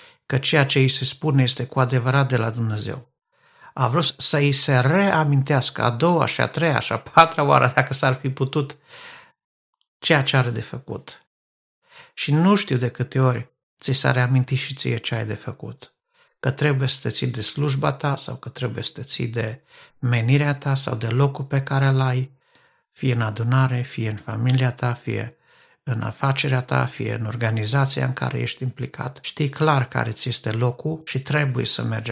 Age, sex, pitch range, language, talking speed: 60-79, male, 125-145 Hz, Romanian, 190 wpm